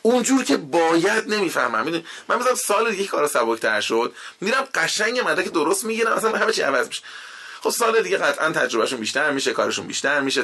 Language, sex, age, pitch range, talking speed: Persian, male, 20-39, 130-195 Hz, 190 wpm